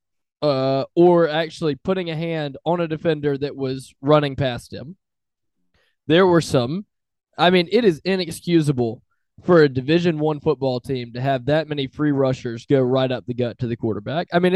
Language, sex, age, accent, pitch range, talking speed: English, male, 20-39, American, 130-175 Hz, 180 wpm